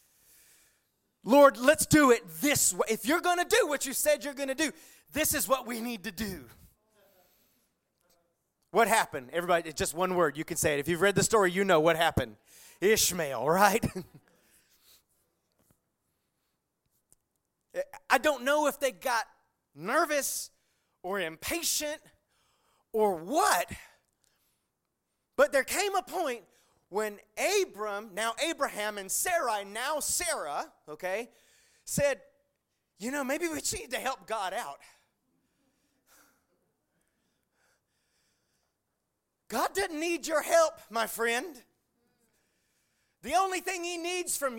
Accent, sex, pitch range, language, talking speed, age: American, male, 205-305 Hz, English, 130 wpm, 30-49